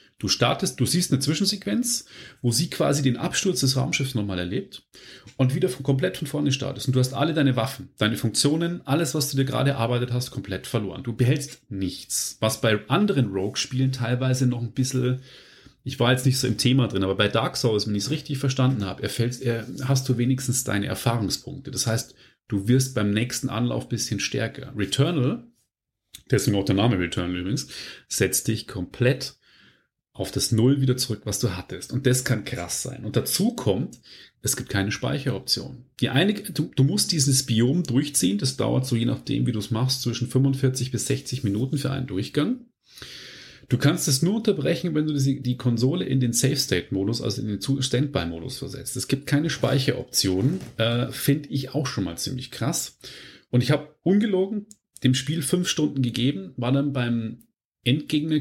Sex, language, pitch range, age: male, German, 120-140 Hz, 30-49